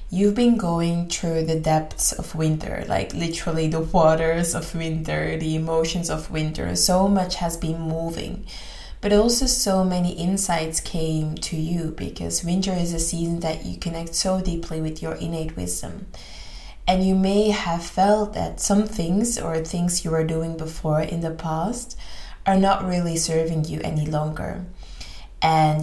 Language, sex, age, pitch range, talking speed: English, female, 20-39, 160-190 Hz, 165 wpm